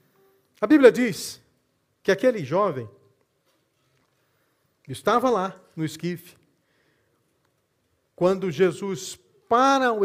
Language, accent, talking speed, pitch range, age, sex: Portuguese, Brazilian, 85 wpm, 130-190 Hz, 50-69, male